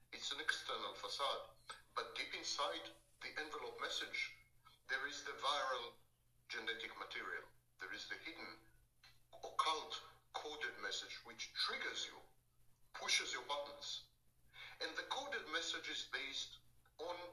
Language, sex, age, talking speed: English, male, 60-79, 125 wpm